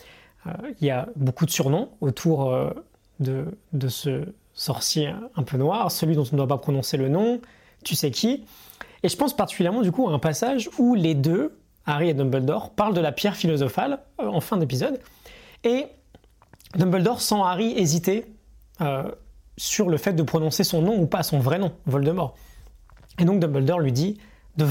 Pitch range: 145-205 Hz